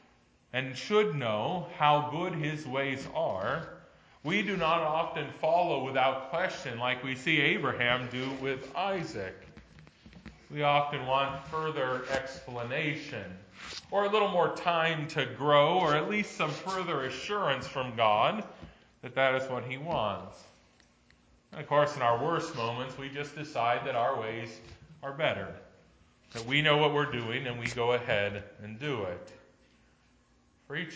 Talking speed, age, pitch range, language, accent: 150 wpm, 40-59, 115-155 Hz, English, American